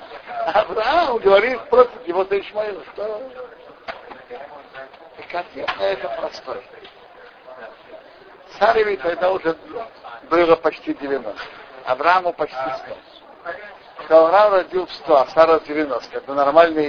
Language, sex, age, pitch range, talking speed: Russian, male, 60-79, 155-225 Hz, 105 wpm